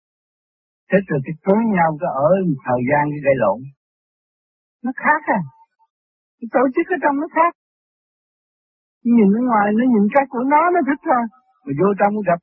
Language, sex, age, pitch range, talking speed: Vietnamese, male, 60-79, 140-205 Hz, 185 wpm